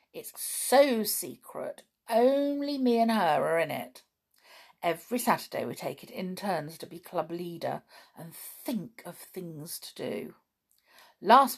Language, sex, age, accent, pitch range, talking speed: English, female, 50-69, British, 160-240 Hz, 145 wpm